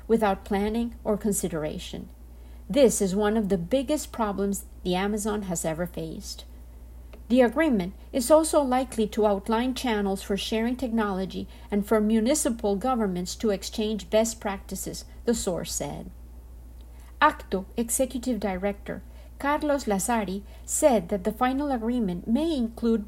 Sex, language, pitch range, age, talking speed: female, Spanish, 190-245 Hz, 50-69, 130 wpm